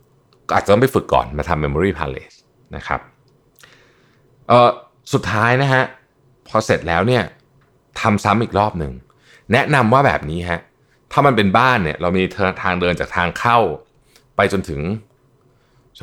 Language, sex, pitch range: Thai, male, 80-125 Hz